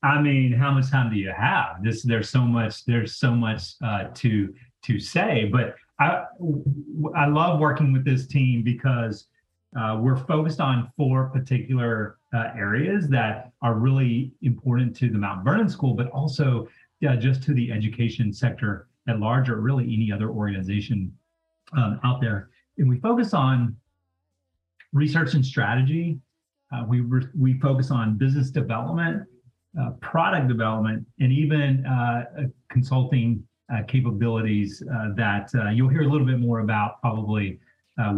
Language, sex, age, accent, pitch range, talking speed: English, male, 30-49, American, 115-145 Hz, 155 wpm